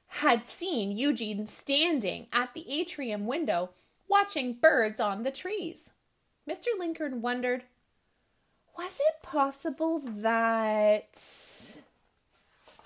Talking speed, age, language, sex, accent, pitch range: 95 wpm, 30-49, English, female, American, 195-285 Hz